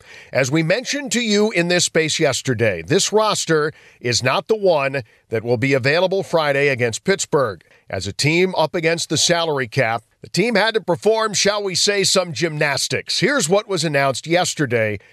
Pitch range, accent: 125-165 Hz, American